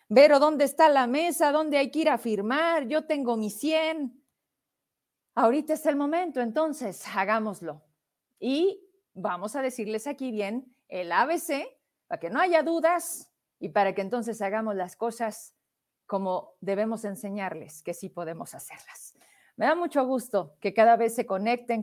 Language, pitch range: Spanish, 205-295 Hz